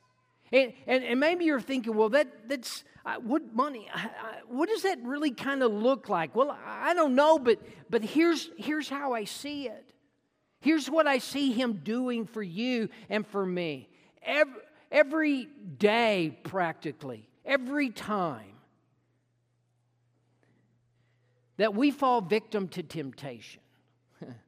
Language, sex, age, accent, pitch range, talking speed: English, male, 50-69, American, 180-275 Hz, 140 wpm